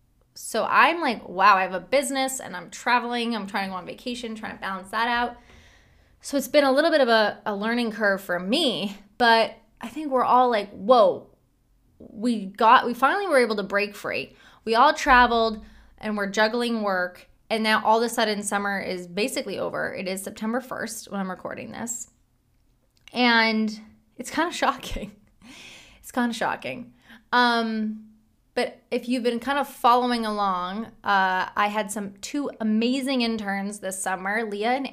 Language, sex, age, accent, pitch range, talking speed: English, female, 20-39, American, 200-245 Hz, 180 wpm